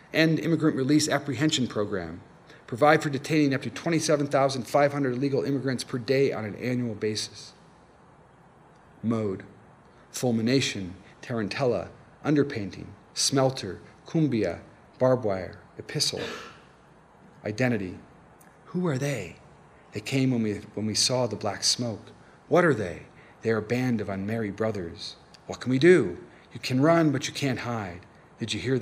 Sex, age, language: male, 40-59, English